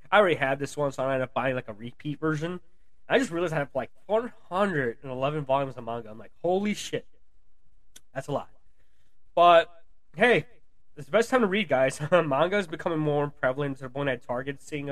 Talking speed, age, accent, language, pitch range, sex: 205 wpm, 20-39, American, English, 125-150 Hz, male